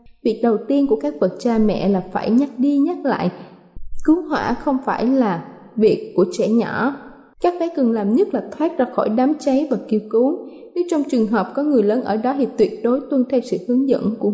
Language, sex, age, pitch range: Thai, female, 20-39, 215-275 Hz